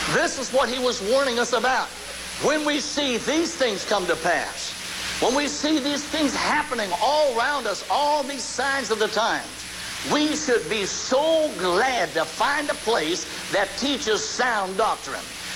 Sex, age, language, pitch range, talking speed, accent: male, 60-79, English, 195-285 Hz, 170 wpm, American